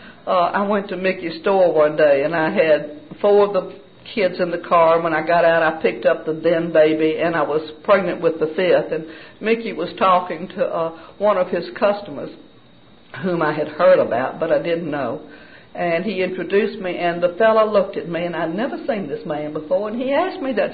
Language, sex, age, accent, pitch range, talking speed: English, female, 60-79, American, 170-255 Hz, 220 wpm